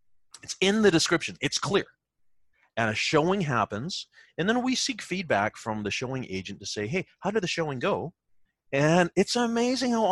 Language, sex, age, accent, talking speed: English, male, 30-49, American, 185 wpm